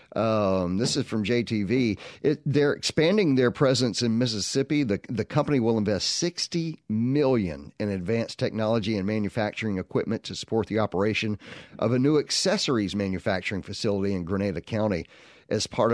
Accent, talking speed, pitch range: American, 150 wpm, 100-125 Hz